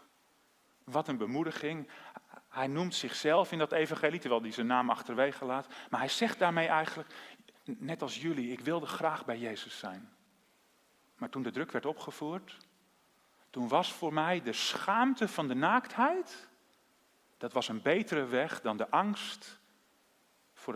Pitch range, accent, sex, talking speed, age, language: 120-180 Hz, Dutch, male, 155 wpm, 40-59, Dutch